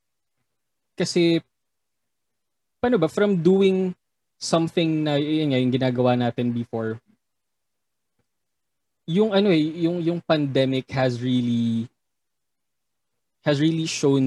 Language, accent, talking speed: Filipino, native, 95 wpm